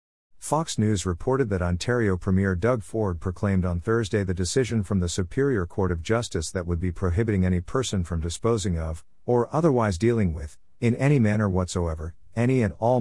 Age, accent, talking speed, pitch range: 50-69, American, 180 wpm, 90-110 Hz